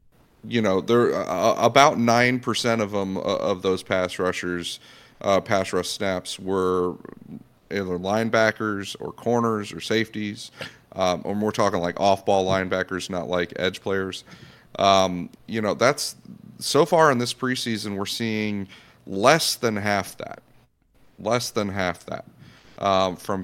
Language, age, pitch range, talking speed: English, 30-49, 95-120 Hz, 145 wpm